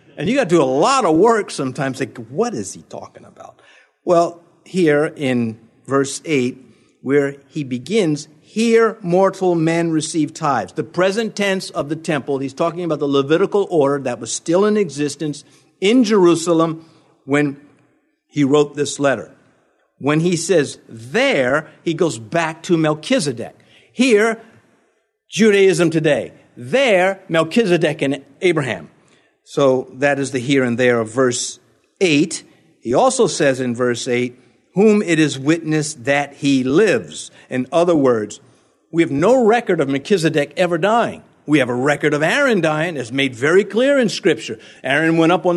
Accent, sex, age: American, male, 50-69